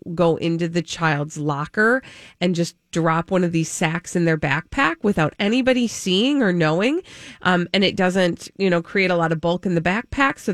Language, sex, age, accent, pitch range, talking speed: English, female, 30-49, American, 160-205 Hz, 200 wpm